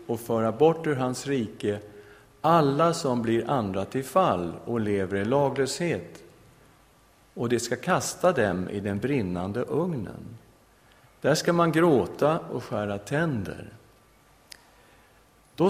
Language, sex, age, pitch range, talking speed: English, male, 50-69, 100-125 Hz, 125 wpm